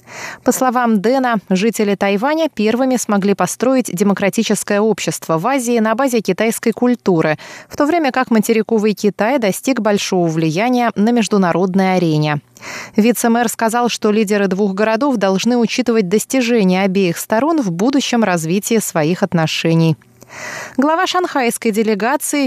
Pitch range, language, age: 195-250 Hz, Russian, 20-39